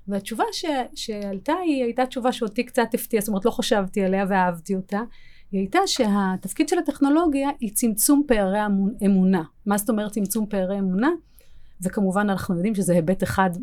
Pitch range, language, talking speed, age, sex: 200-275 Hz, Hebrew, 165 wpm, 30-49, female